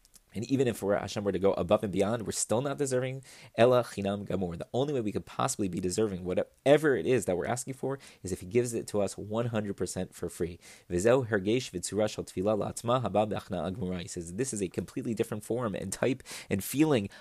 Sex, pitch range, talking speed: male, 95-115 Hz, 185 wpm